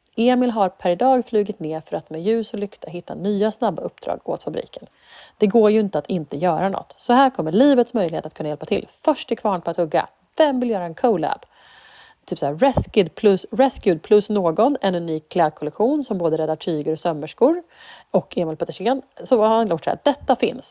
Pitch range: 170-250 Hz